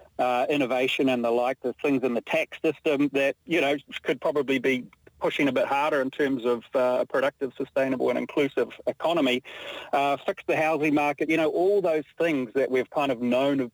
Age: 40-59